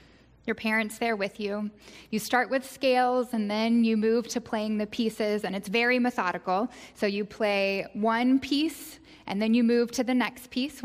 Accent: American